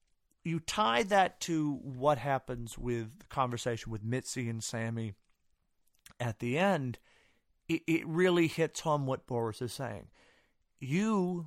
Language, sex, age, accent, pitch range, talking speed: English, male, 40-59, American, 120-155 Hz, 135 wpm